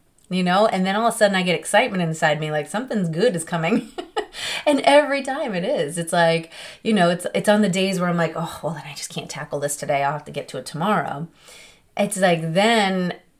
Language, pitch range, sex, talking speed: English, 165-215 Hz, female, 240 wpm